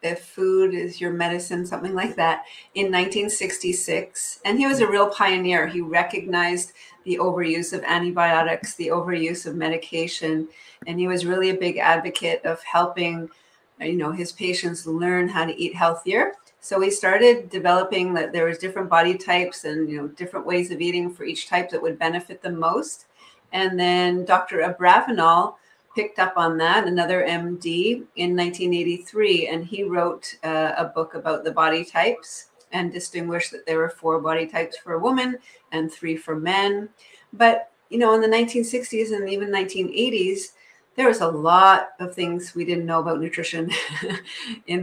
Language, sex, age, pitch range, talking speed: English, female, 40-59, 170-190 Hz, 170 wpm